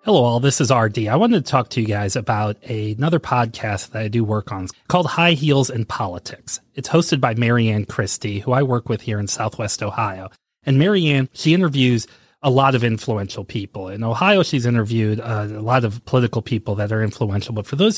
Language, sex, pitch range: English, male, 110-135 Hz